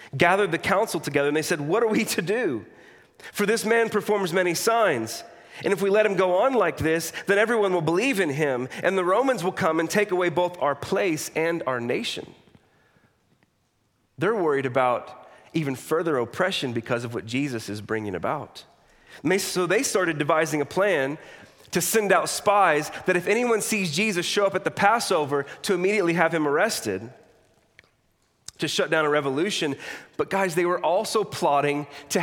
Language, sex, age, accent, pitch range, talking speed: English, male, 30-49, American, 150-205 Hz, 180 wpm